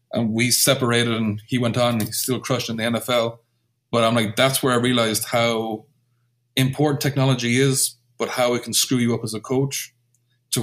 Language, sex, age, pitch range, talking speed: English, male, 30-49, 115-130 Hz, 205 wpm